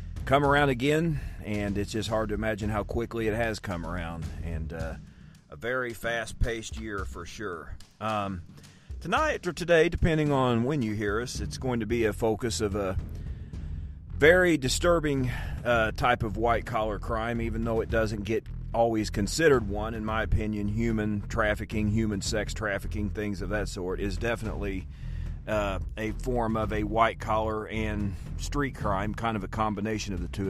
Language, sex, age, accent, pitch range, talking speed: English, male, 40-59, American, 95-115 Hz, 175 wpm